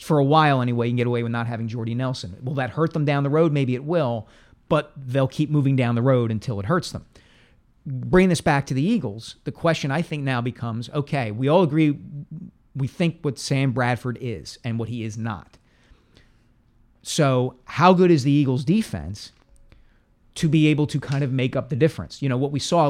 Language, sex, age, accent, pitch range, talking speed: English, male, 40-59, American, 120-150 Hz, 220 wpm